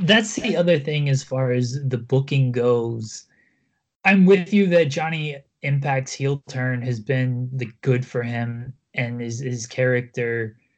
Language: English